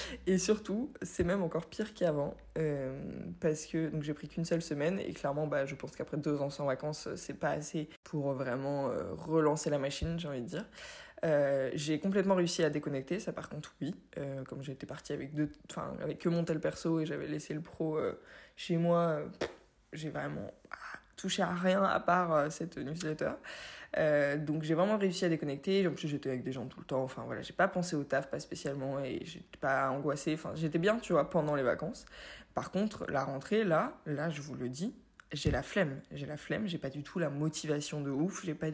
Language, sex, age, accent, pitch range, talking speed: French, female, 20-39, French, 145-175 Hz, 215 wpm